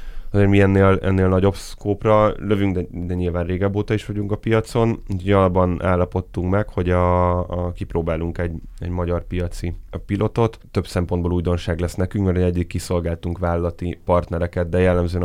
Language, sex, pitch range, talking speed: Hungarian, male, 85-95 Hz, 150 wpm